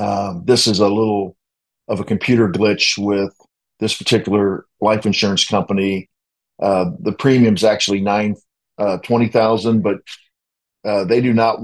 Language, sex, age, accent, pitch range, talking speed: English, male, 50-69, American, 100-115 Hz, 145 wpm